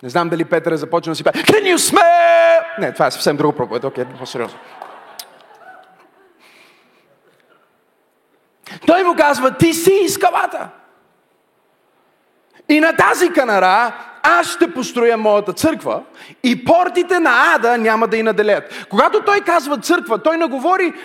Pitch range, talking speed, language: 240-330 Hz, 135 wpm, Bulgarian